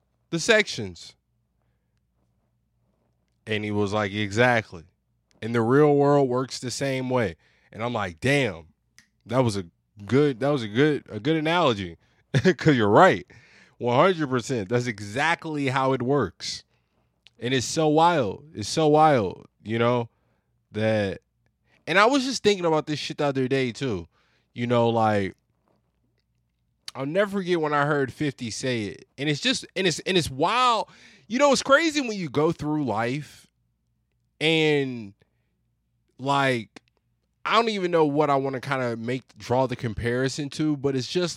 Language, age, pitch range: English, 20-39, 110-155 Hz